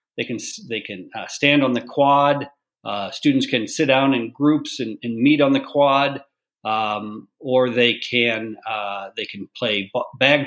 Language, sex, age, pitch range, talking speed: English, male, 50-69, 120-150 Hz, 180 wpm